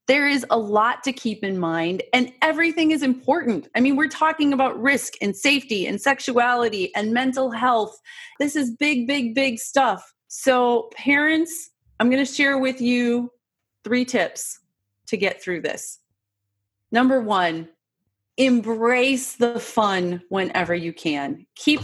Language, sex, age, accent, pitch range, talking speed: English, female, 30-49, American, 185-250 Hz, 150 wpm